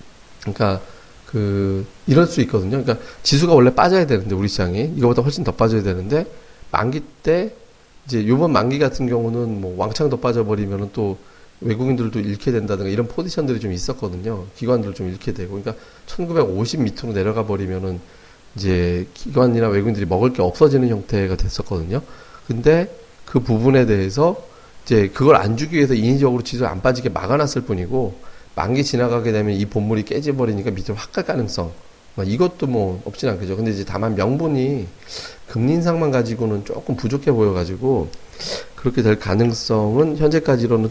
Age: 40-59